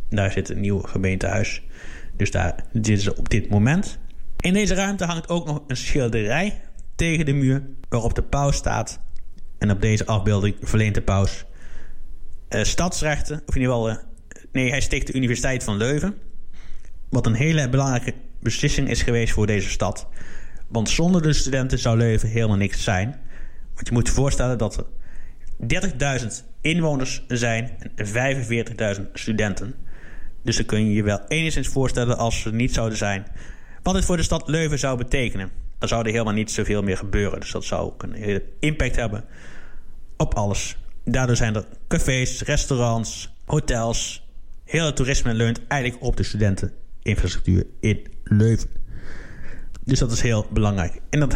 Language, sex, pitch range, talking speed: Dutch, male, 100-130 Hz, 165 wpm